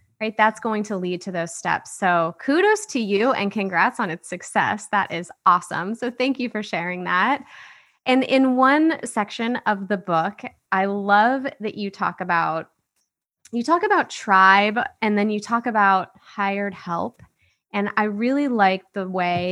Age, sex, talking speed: 20-39, female, 170 wpm